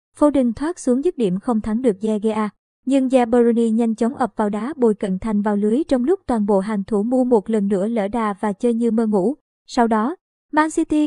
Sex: male